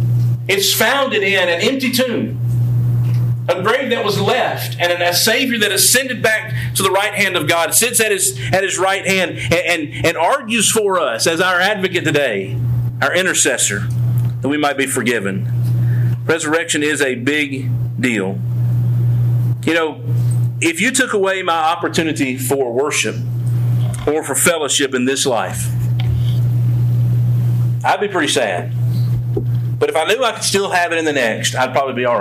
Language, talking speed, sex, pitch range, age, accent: English, 165 wpm, male, 120-175 Hz, 50-69, American